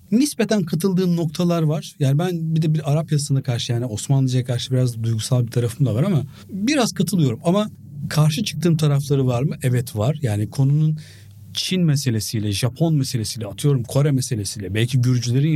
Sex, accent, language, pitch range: male, native, Turkish, 110-155 Hz